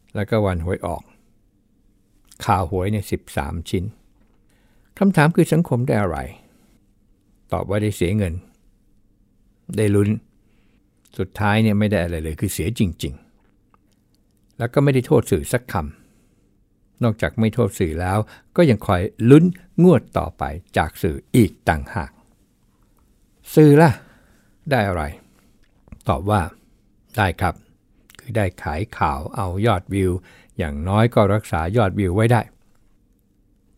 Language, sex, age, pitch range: Thai, male, 60-79, 95-115 Hz